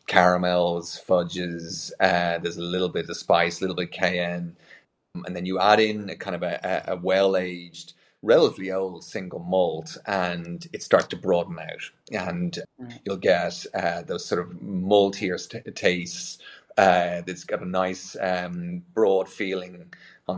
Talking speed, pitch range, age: 155 wpm, 90-105 Hz, 30-49